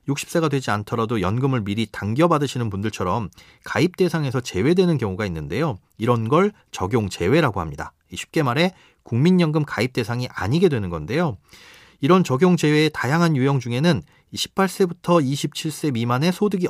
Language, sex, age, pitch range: Korean, male, 40-59, 120-170 Hz